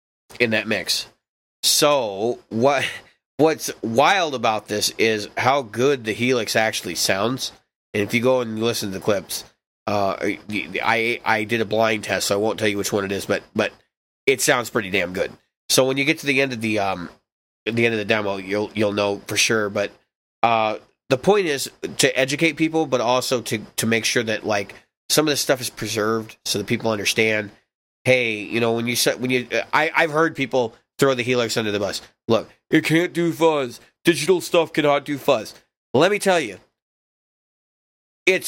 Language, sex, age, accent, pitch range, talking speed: English, male, 30-49, American, 110-160 Hz, 200 wpm